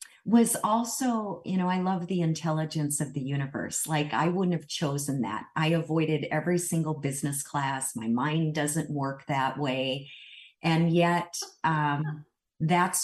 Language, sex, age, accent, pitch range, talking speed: English, female, 40-59, American, 140-175 Hz, 150 wpm